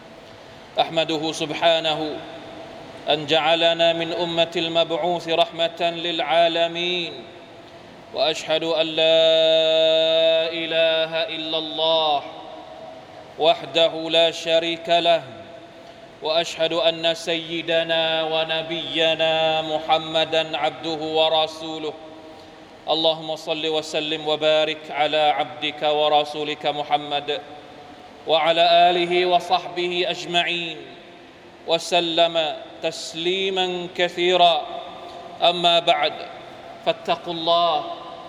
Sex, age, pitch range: male, 30-49, 160-170 Hz